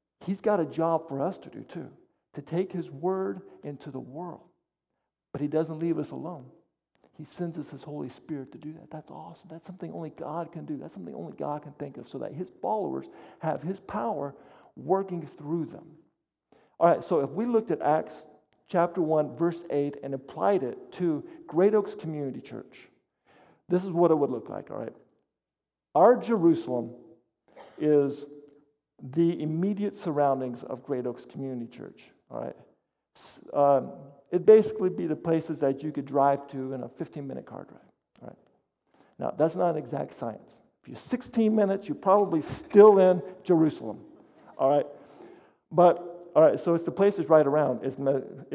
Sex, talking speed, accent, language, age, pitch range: male, 180 wpm, American, English, 50-69, 140-180 Hz